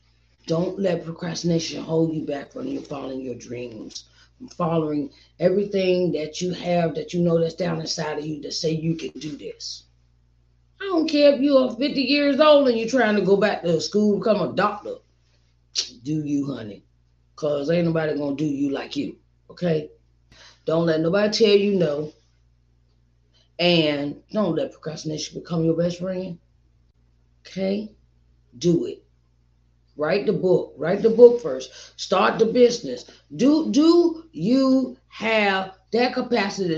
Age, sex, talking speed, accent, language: 30-49, female, 155 wpm, American, English